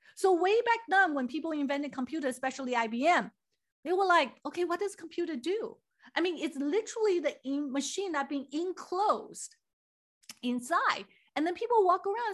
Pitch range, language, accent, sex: 230-345 Hz, English, American, female